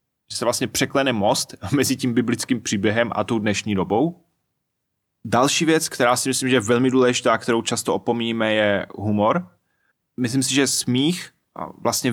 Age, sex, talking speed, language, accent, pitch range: 20-39, male, 160 wpm, Czech, native, 110-130 Hz